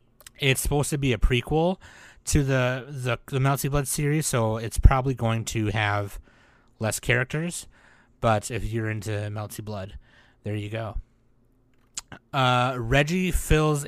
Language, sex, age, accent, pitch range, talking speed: English, male, 30-49, American, 110-135 Hz, 145 wpm